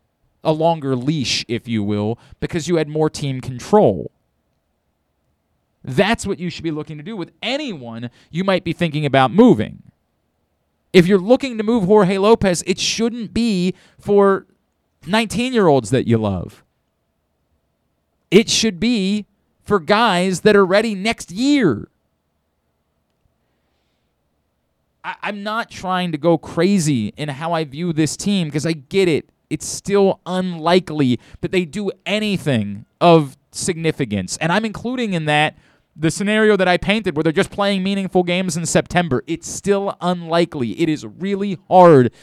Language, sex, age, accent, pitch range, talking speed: English, male, 30-49, American, 145-195 Hz, 145 wpm